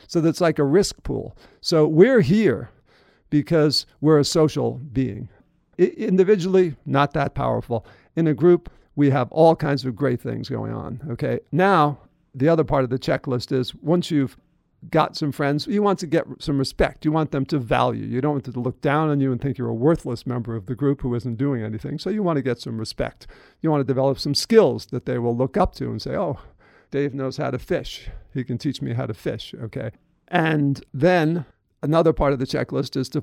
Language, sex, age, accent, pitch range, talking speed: English, male, 50-69, American, 125-160 Hz, 220 wpm